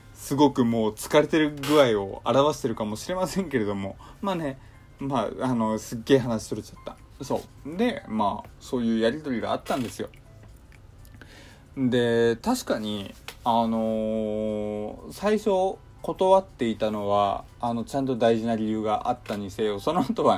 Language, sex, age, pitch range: Japanese, male, 20-39, 110-140 Hz